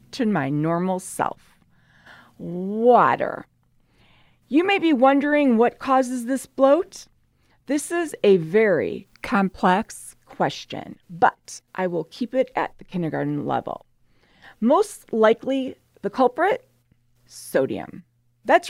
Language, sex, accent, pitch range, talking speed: English, female, American, 170-245 Hz, 105 wpm